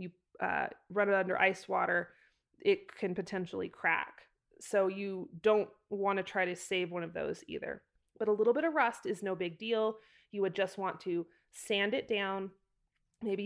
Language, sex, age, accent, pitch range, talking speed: English, female, 30-49, American, 185-240 Hz, 185 wpm